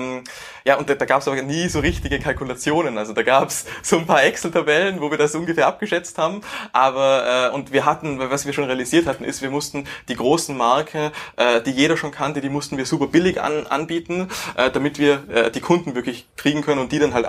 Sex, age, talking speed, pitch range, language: male, 20-39, 230 wpm, 120-145 Hz, German